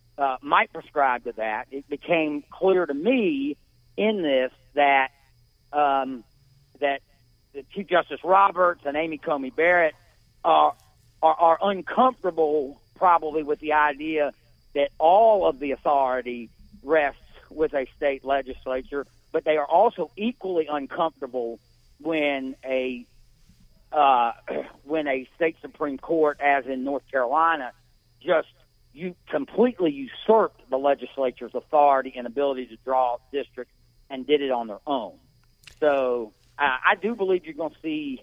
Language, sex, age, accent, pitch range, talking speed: English, male, 50-69, American, 125-165 Hz, 135 wpm